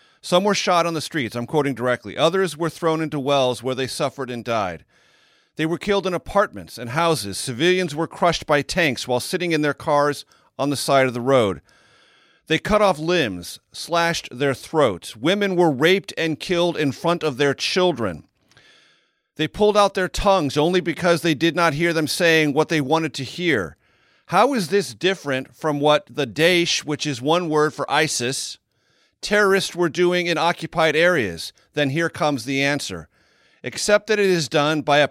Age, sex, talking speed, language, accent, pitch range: 40-59, male, 185 wpm, English, American, 140-175 Hz